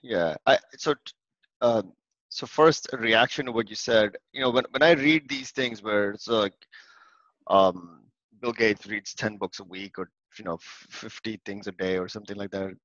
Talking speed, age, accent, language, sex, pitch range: 195 wpm, 30-49, Indian, English, male, 100-145 Hz